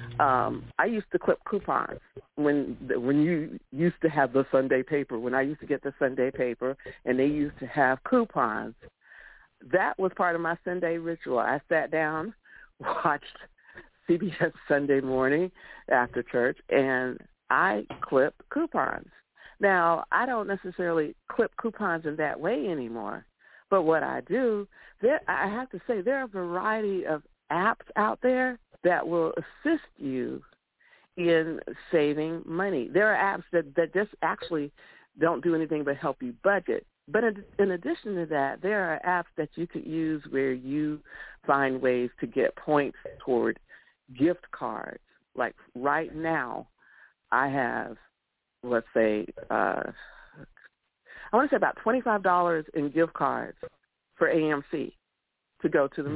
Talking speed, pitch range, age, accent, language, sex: 150 wpm, 140-185 Hz, 60-79, American, English, female